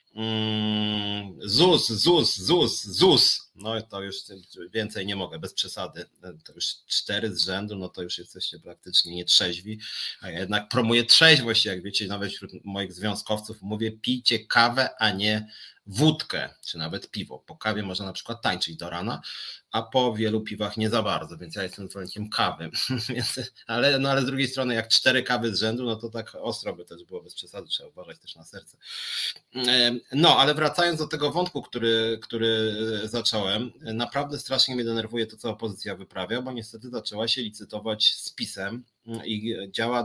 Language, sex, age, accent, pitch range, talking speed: Polish, male, 30-49, native, 100-125 Hz, 175 wpm